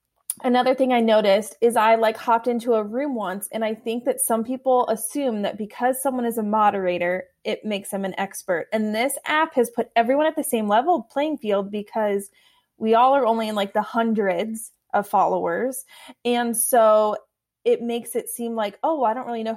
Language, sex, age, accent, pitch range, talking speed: English, female, 20-39, American, 200-240 Hz, 200 wpm